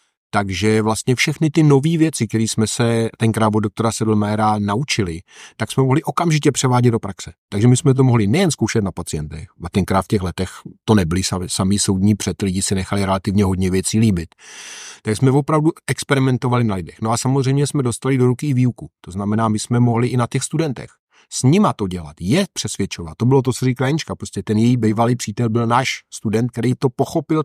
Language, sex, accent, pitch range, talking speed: Czech, male, native, 105-130 Hz, 205 wpm